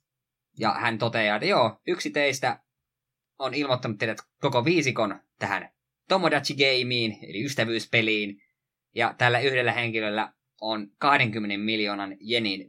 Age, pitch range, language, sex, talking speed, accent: 20-39, 110-135 Hz, Finnish, male, 115 wpm, native